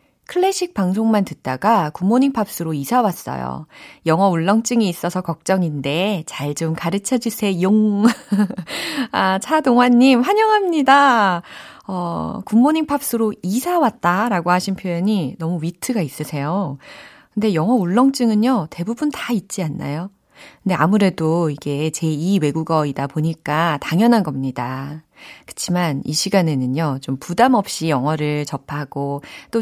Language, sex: Korean, female